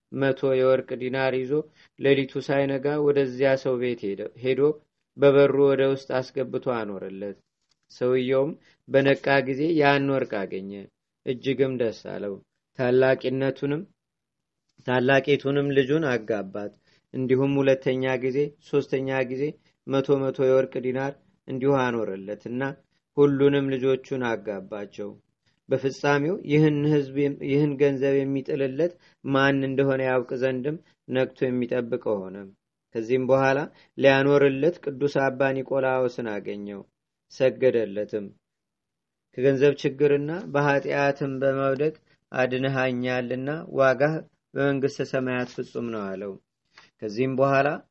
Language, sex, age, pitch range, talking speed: Amharic, male, 40-59, 130-140 Hz, 95 wpm